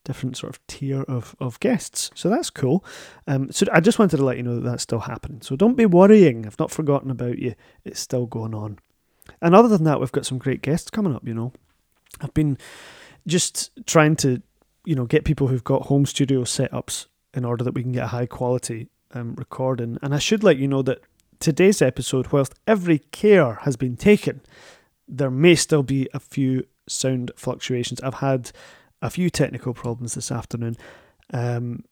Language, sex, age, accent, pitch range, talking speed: English, male, 30-49, British, 125-150 Hz, 200 wpm